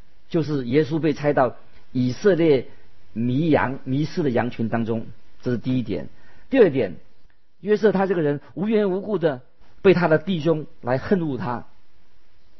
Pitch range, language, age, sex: 115-155 Hz, Chinese, 50-69, male